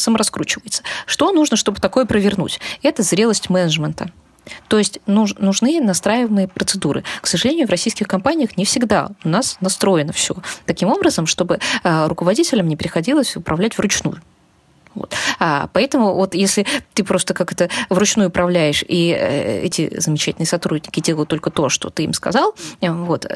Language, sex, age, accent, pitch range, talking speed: Russian, female, 20-39, native, 165-220 Hz, 140 wpm